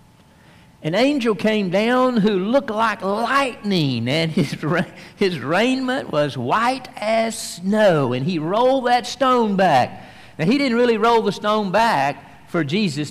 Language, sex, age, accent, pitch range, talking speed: English, male, 50-69, American, 145-215 Hz, 145 wpm